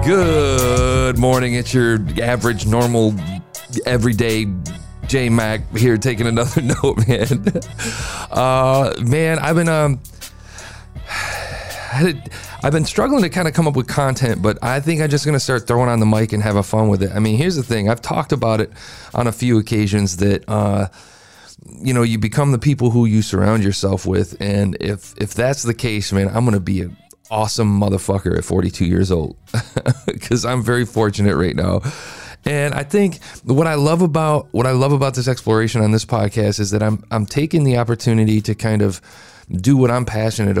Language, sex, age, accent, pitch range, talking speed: English, male, 30-49, American, 105-140 Hz, 185 wpm